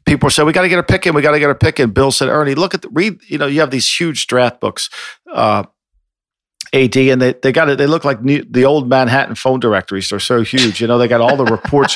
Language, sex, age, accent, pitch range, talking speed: English, male, 50-69, American, 120-145 Hz, 285 wpm